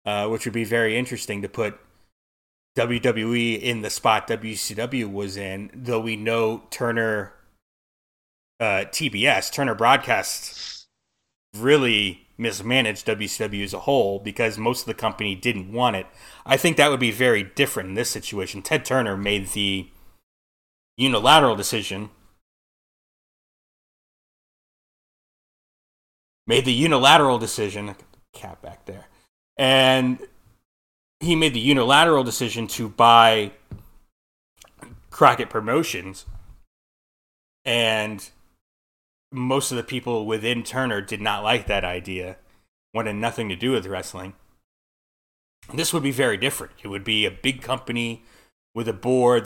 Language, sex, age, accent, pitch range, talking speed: English, male, 30-49, American, 95-120 Hz, 125 wpm